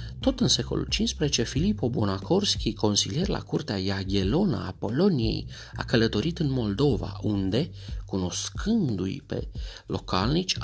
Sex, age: male, 30-49